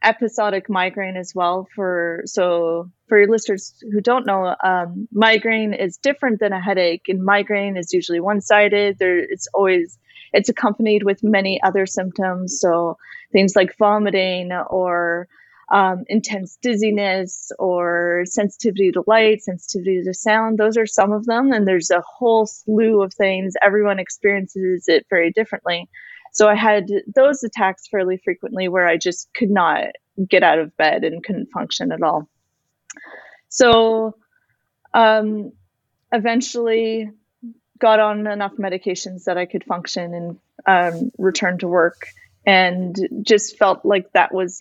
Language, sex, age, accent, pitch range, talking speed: English, female, 30-49, American, 180-215 Hz, 145 wpm